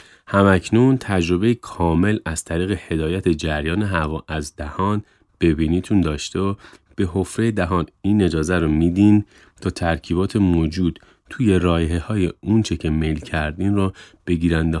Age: 30-49